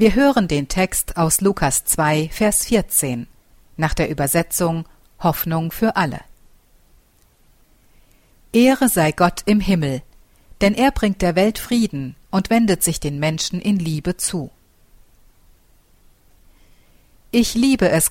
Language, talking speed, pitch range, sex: German, 125 wpm, 155-205 Hz, female